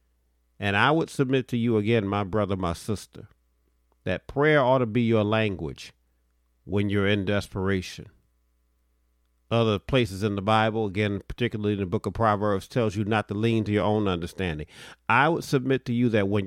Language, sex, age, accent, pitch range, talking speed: English, male, 50-69, American, 85-115 Hz, 180 wpm